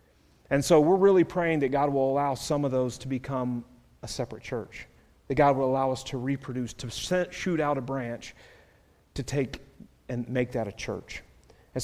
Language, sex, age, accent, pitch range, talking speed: English, male, 40-59, American, 120-165 Hz, 190 wpm